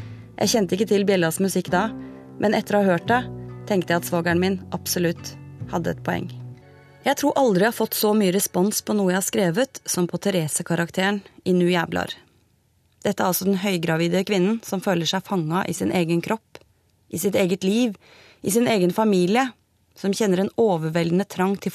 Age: 30-49